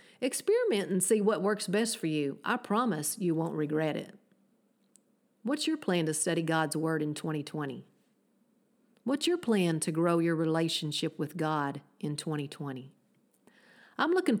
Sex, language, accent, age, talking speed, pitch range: female, English, American, 40-59, 150 wpm, 165-220 Hz